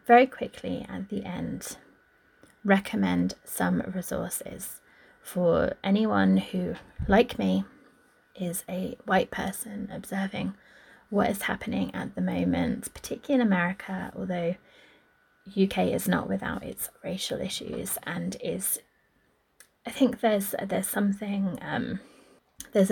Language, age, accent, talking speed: English, 20-39, British, 115 wpm